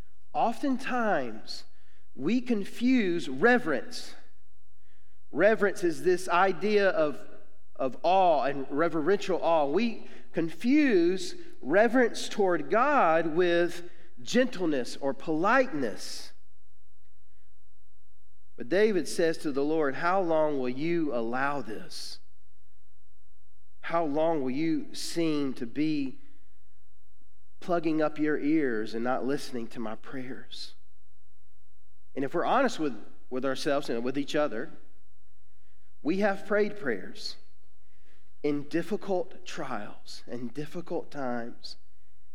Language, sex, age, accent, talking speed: English, male, 40-59, American, 105 wpm